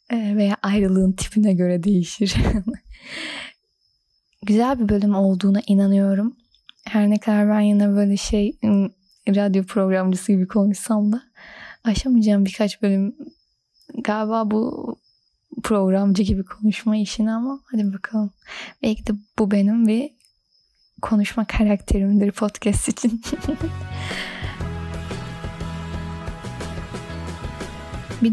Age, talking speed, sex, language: 10-29, 95 wpm, female, Turkish